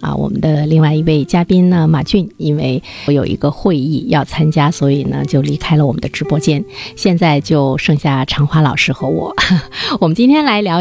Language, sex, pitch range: Chinese, female, 145-185 Hz